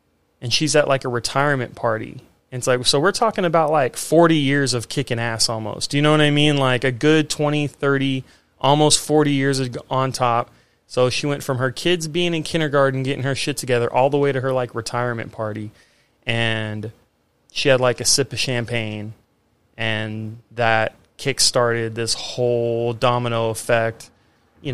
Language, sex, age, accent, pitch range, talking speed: English, male, 30-49, American, 115-145 Hz, 180 wpm